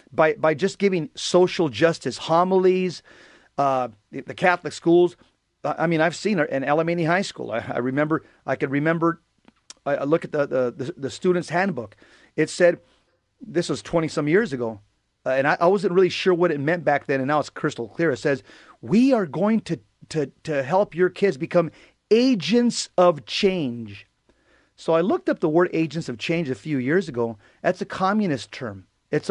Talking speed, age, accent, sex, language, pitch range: 195 wpm, 40-59, American, male, English, 140-180 Hz